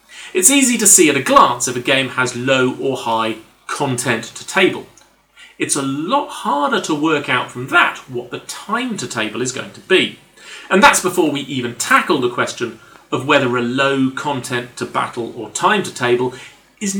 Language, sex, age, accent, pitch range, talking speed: English, male, 40-59, British, 120-195 Hz, 195 wpm